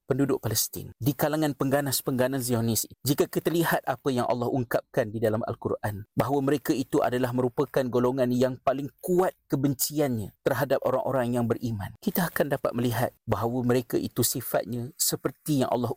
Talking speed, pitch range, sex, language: 155 wpm, 115-140 Hz, male, Malay